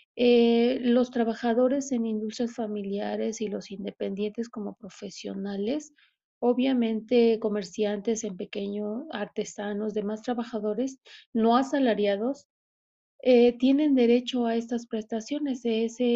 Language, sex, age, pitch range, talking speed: English, female, 30-49, 210-245 Hz, 100 wpm